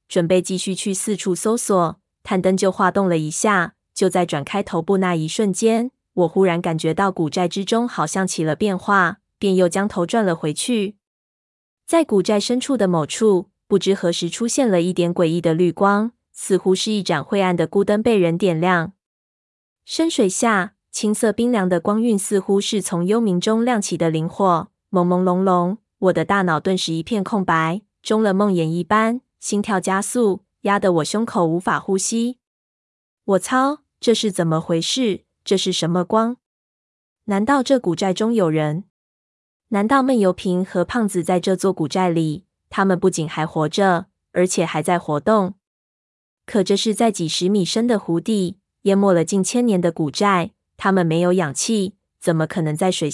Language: Chinese